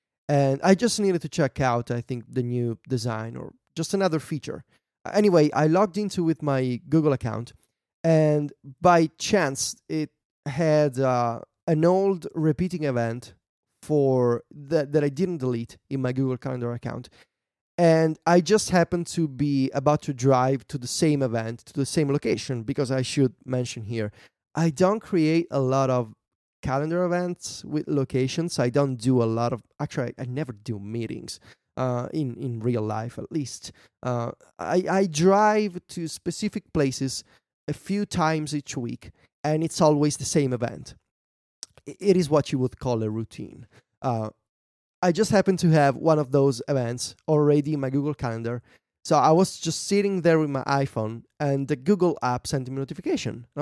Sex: male